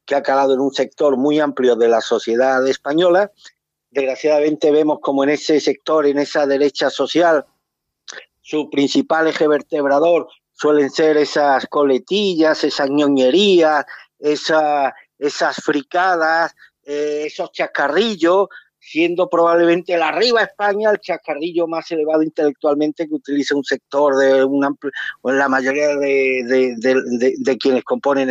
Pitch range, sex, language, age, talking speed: 135-160 Hz, male, Spanish, 50-69, 135 wpm